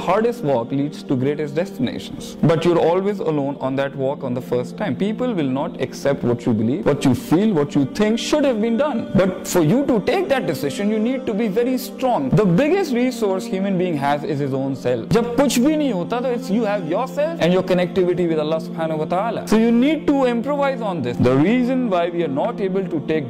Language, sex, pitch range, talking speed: Urdu, male, 165-235 Hz, 210 wpm